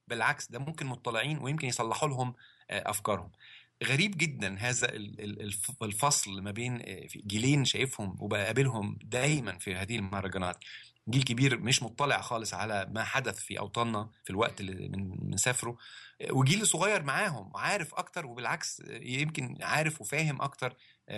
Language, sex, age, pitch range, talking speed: Arabic, male, 30-49, 105-135 Hz, 130 wpm